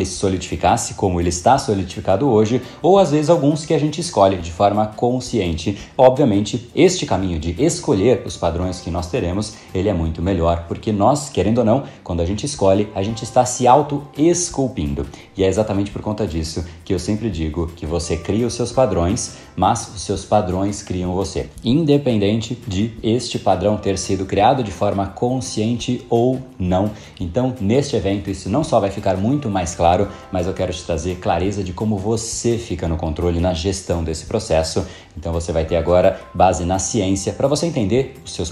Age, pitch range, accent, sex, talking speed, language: 30-49, 95-125 Hz, Brazilian, male, 185 wpm, Portuguese